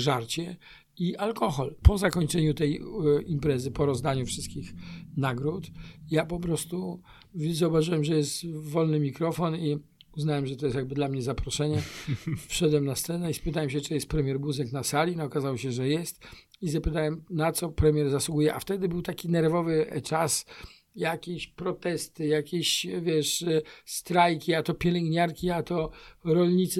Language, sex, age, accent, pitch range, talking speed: Polish, male, 50-69, native, 150-175 Hz, 150 wpm